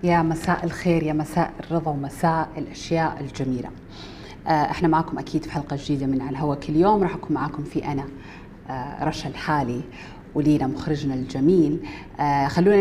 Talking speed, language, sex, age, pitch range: 145 wpm, Arabic, female, 30-49, 145-180 Hz